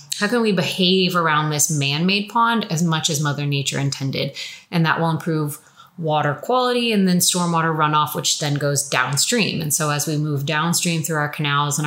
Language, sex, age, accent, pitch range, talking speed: English, female, 30-49, American, 150-180 Hz, 190 wpm